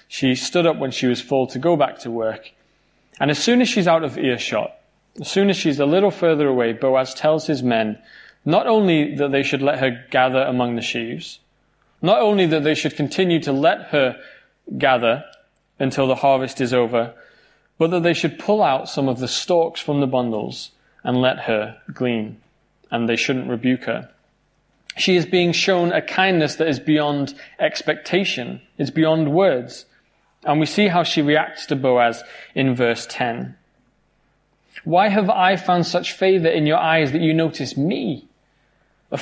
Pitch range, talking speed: 130-180 Hz, 180 wpm